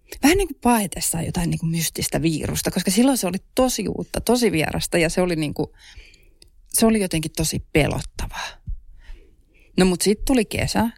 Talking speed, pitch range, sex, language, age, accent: 175 wpm, 155-205 Hz, female, Finnish, 30-49, native